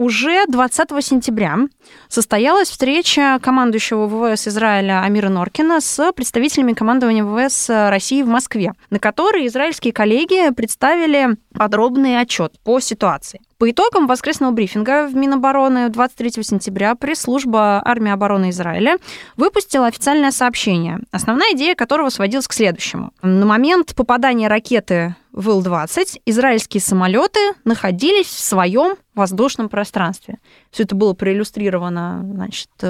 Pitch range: 210-275 Hz